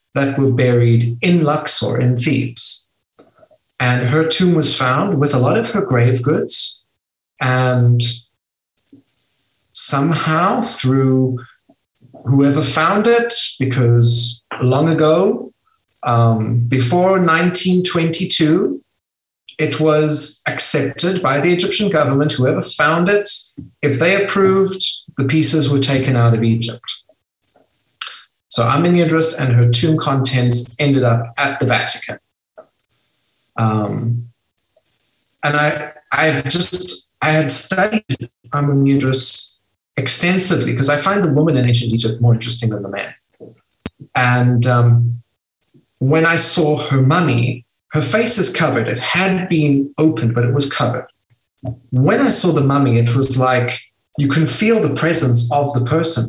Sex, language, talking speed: male, English, 130 wpm